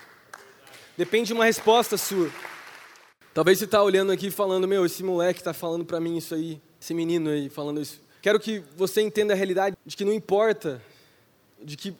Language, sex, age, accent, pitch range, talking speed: Portuguese, male, 20-39, Brazilian, 185-215 Hz, 185 wpm